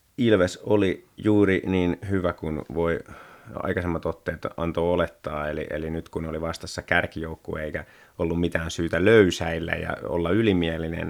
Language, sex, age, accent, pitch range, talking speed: Finnish, male, 30-49, native, 85-95 Hz, 140 wpm